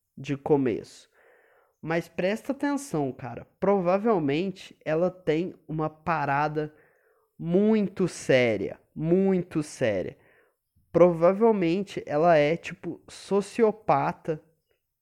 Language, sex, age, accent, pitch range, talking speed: Portuguese, male, 20-39, Brazilian, 150-205 Hz, 80 wpm